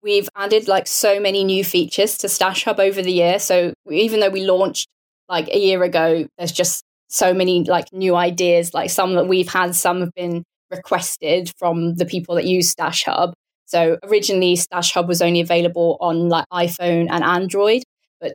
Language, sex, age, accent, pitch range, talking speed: English, female, 20-39, British, 170-190 Hz, 190 wpm